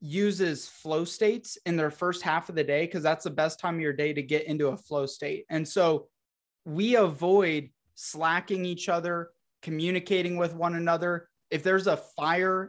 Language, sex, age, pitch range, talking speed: English, male, 20-39, 150-180 Hz, 185 wpm